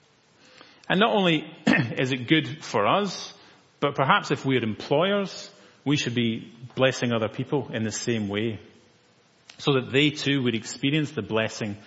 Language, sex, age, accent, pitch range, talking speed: English, male, 30-49, British, 115-155 Hz, 160 wpm